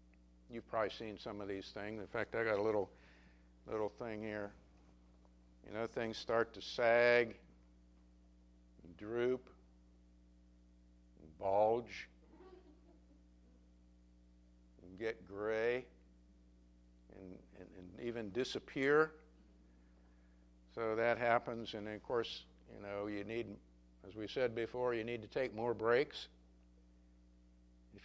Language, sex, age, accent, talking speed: English, male, 60-79, American, 120 wpm